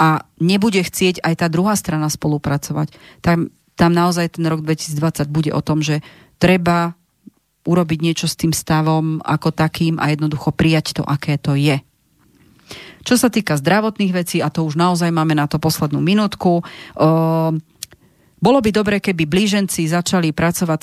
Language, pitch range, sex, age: Slovak, 155-190 Hz, female, 40-59